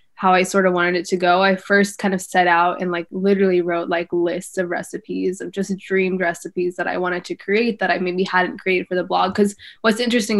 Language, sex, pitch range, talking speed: English, female, 185-205 Hz, 240 wpm